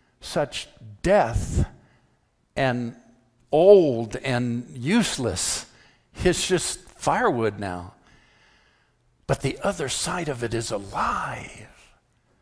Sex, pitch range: male, 120-175 Hz